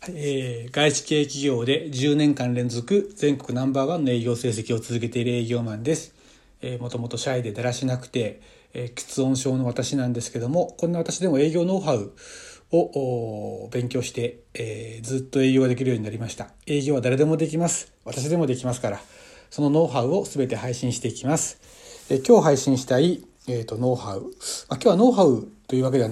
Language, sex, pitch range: Japanese, male, 120-155 Hz